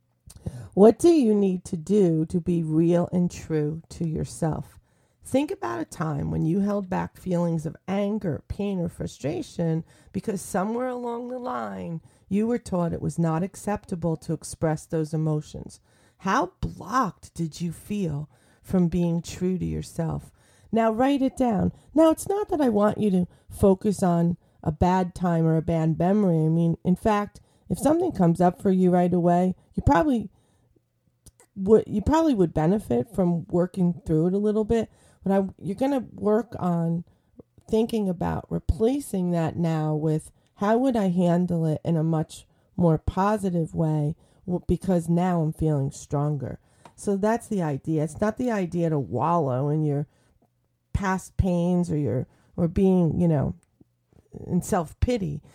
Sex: female